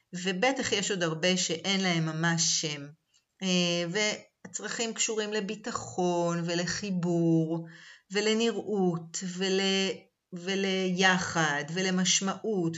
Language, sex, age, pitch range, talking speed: Hebrew, female, 40-59, 170-215 Hz, 75 wpm